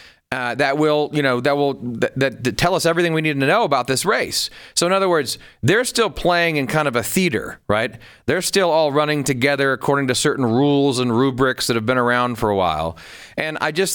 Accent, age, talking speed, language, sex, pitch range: American, 40-59, 230 wpm, English, male, 135-180 Hz